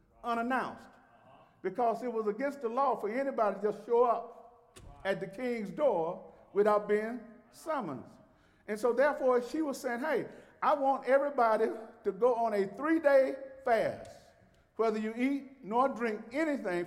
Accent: American